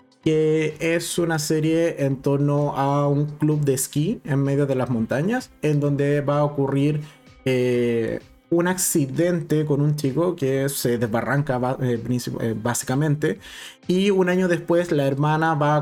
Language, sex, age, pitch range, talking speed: Spanish, male, 20-39, 125-150 Hz, 150 wpm